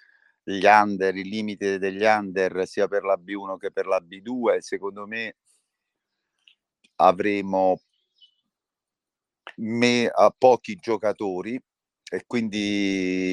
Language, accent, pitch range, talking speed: Italian, native, 95-105 Hz, 105 wpm